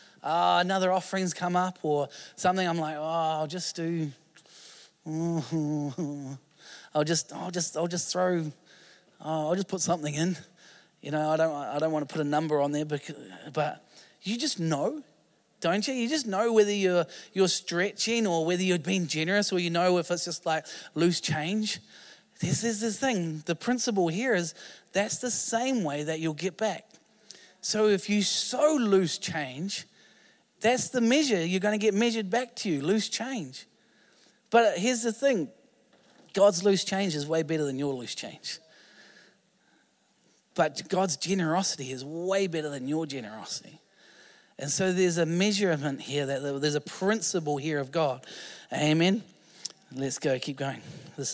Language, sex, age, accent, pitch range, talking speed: English, male, 20-39, Australian, 155-195 Hz, 165 wpm